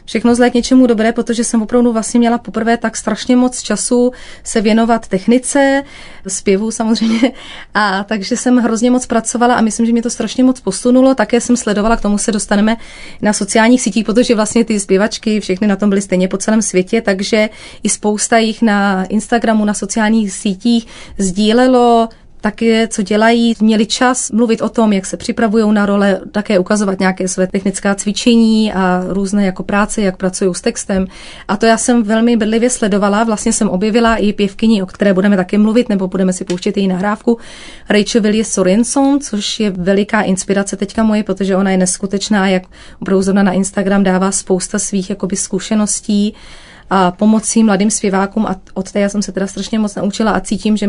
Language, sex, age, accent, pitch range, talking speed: Czech, female, 30-49, native, 195-230 Hz, 185 wpm